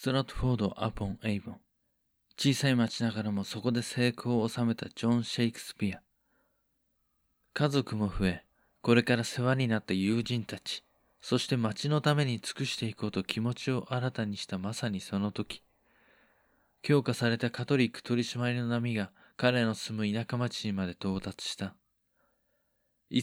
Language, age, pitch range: Japanese, 20-39, 105-125 Hz